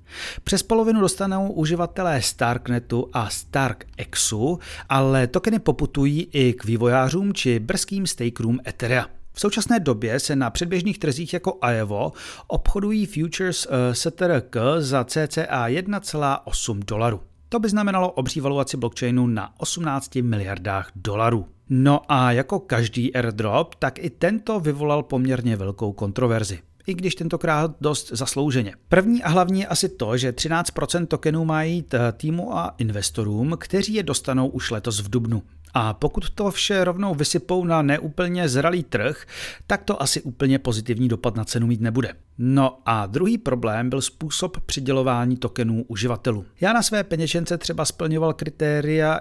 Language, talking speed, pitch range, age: Czech, 140 wpm, 120-170 Hz, 40-59